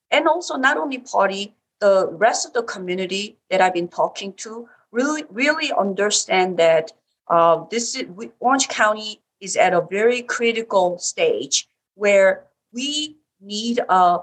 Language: English